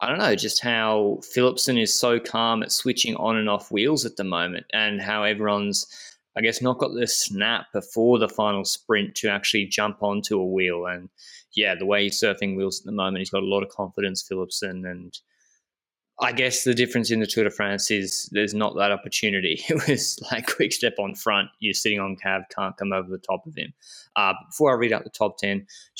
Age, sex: 20-39, male